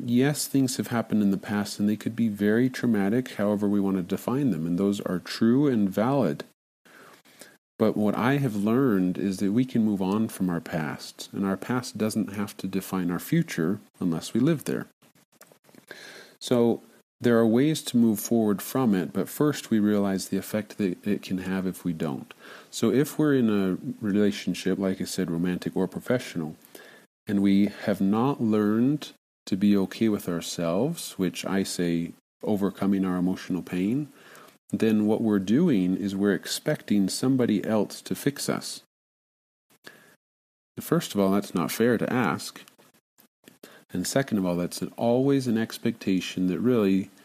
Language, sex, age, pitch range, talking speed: English, male, 40-59, 95-115 Hz, 170 wpm